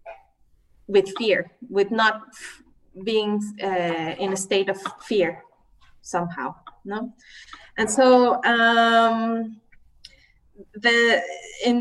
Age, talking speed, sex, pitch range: 20-39, 95 wpm, female, 190-240 Hz